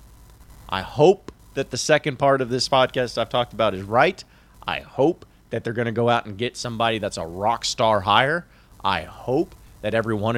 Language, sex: English, male